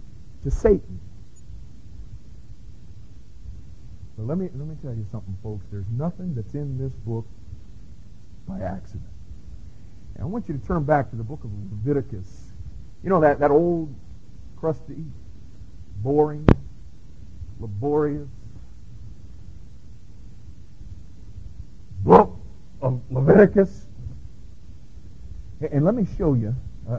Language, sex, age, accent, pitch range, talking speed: English, male, 50-69, American, 95-135 Hz, 105 wpm